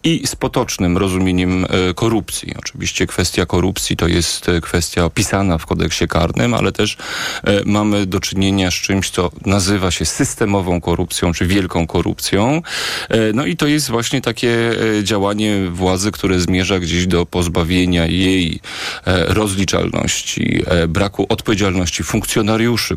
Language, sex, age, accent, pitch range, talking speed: Polish, male, 40-59, native, 90-110 Hz, 125 wpm